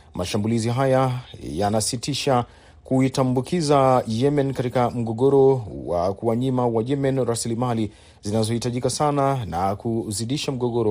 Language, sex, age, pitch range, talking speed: Swahili, male, 40-59, 105-130 Hz, 95 wpm